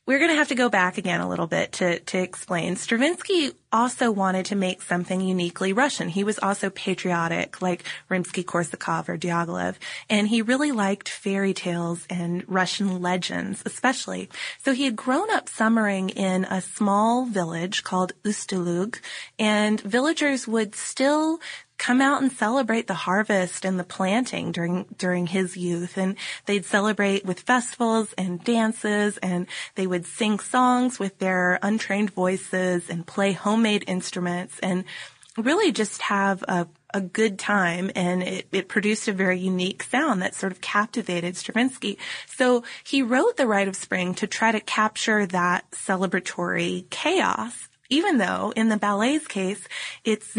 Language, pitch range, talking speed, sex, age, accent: English, 185-230 Hz, 155 wpm, female, 20-39, American